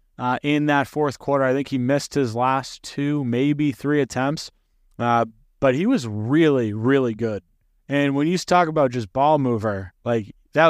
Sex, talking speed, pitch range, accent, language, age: male, 180 wpm, 115-155 Hz, American, English, 30-49